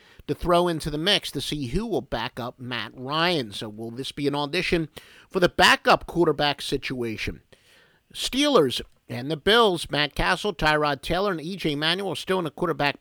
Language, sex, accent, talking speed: English, male, American, 185 wpm